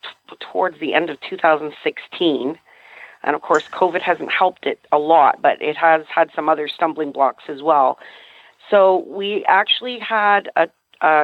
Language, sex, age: English, female, 40-59